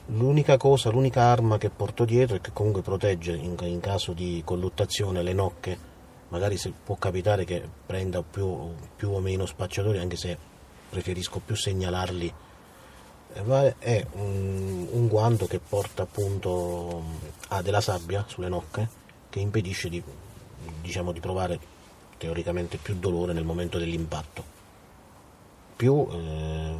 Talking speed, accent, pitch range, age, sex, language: 130 wpm, native, 85-100 Hz, 30-49, male, Italian